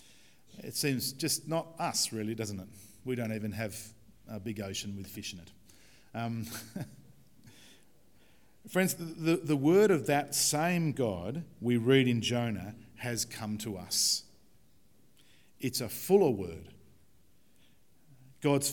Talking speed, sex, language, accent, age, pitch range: 130 wpm, male, English, Australian, 50-69, 105-135 Hz